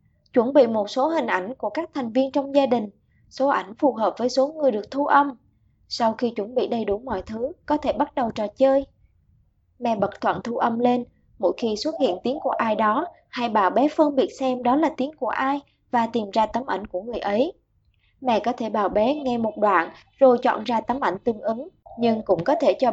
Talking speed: 235 wpm